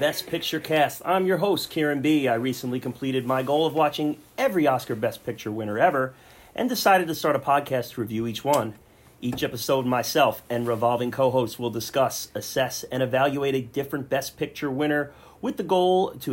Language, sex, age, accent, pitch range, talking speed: English, male, 30-49, American, 120-155 Hz, 190 wpm